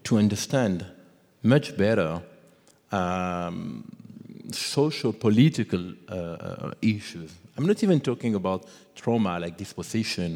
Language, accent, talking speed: English, French, 100 wpm